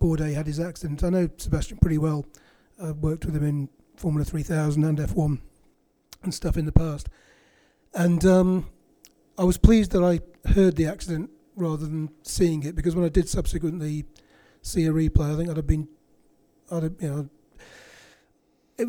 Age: 30-49